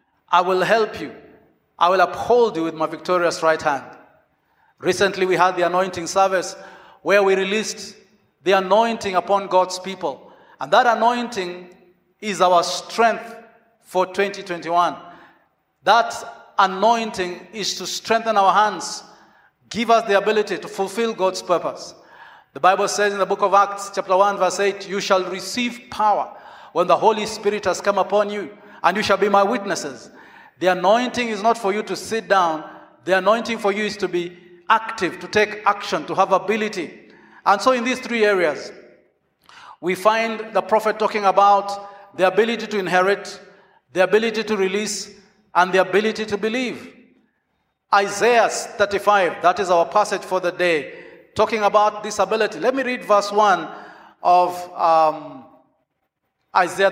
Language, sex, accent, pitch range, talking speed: English, male, South African, 185-215 Hz, 155 wpm